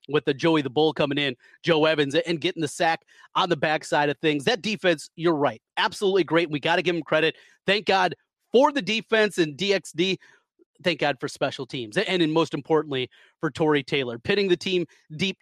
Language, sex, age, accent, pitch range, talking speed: English, male, 30-49, American, 155-220 Hz, 205 wpm